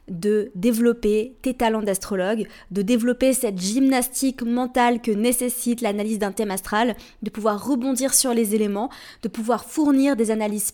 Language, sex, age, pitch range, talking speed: French, female, 20-39, 210-245 Hz, 150 wpm